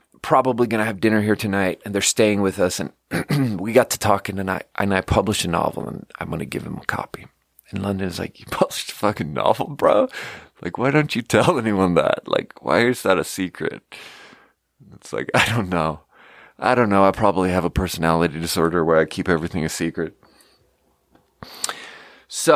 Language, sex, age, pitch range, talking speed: English, male, 30-49, 85-115 Hz, 190 wpm